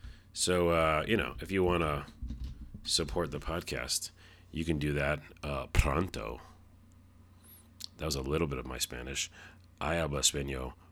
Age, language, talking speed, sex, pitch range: 30-49, English, 150 wpm, male, 80-95 Hz